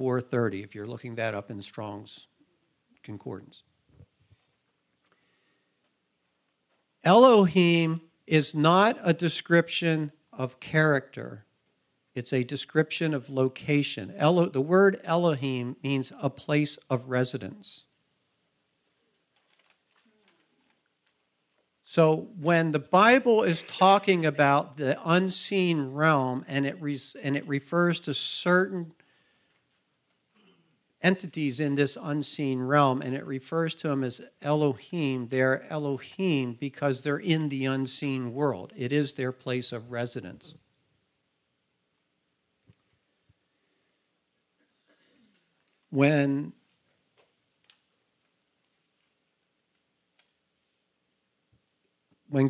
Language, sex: English, male